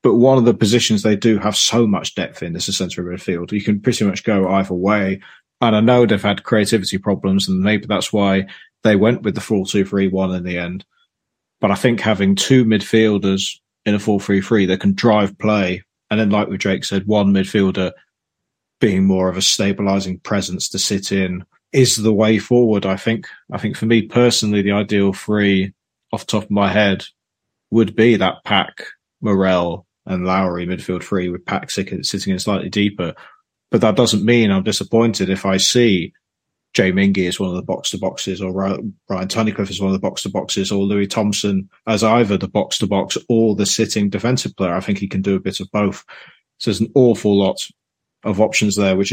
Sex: male